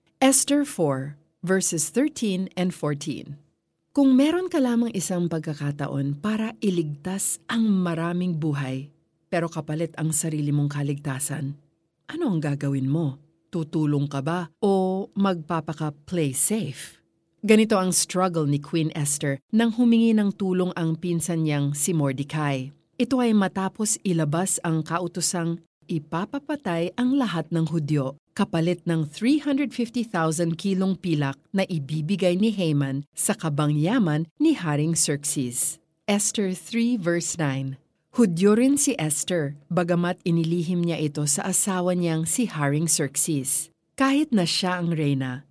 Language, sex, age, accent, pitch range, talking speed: Filipino, female, 40-59, native, 155-205 Hz, 130 wpm